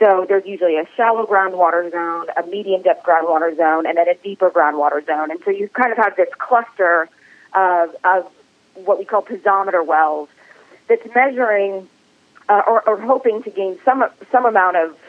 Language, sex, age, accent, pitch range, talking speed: English, female, 30-49, American, 180-240 Hz, 180 wpm